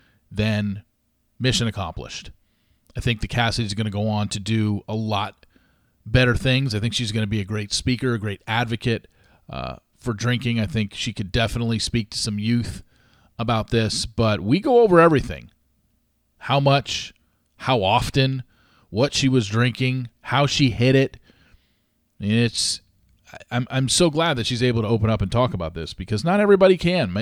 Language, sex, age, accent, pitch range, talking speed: English, male, 40-59, American, 105-130 Hz, 175 wpm